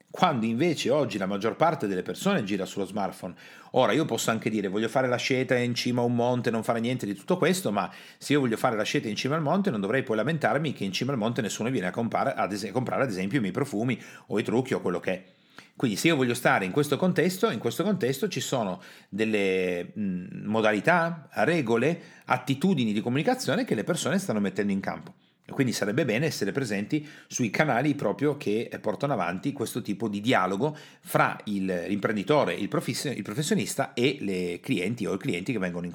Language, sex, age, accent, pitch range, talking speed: Italian, male, 40-59, native, 105-150 Hz, 205 wpm